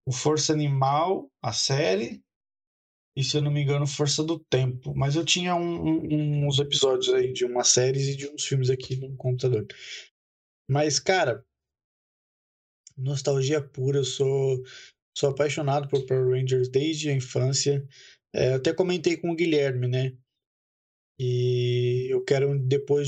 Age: 20-39